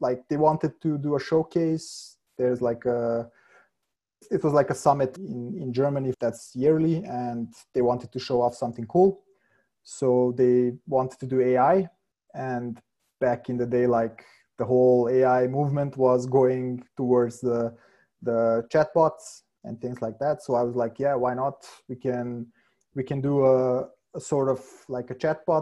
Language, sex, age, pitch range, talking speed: English, male, 20-39, 125-150 Hz, 175 wpm